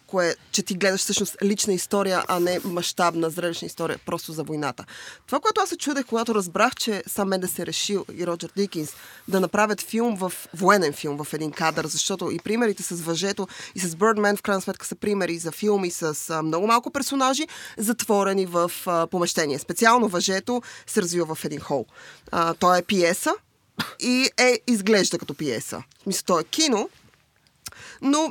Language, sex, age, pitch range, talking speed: Bulgarian, female, 20-39, 170-225 Hz, 180 wpm